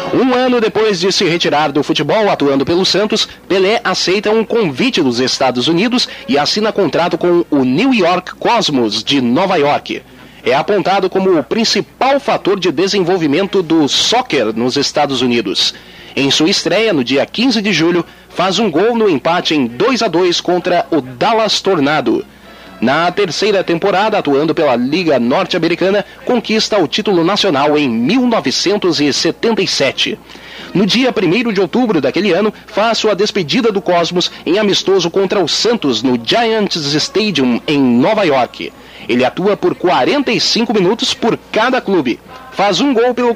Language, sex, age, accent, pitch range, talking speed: Portuguese, male, 30-49, Brazilian, 170-225 Hz, 155 wpm